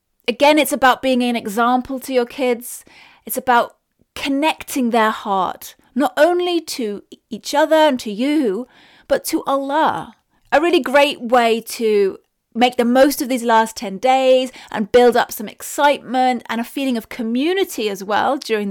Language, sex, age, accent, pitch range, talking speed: English, female, 30-49, British, 225-290 Hz, 165 wpm